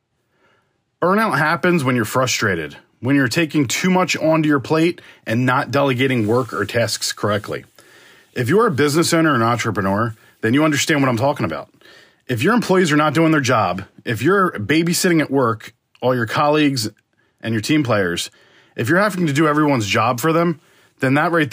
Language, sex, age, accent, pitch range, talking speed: English, male, 40-59, American, 120-160 Hz, 185 wpm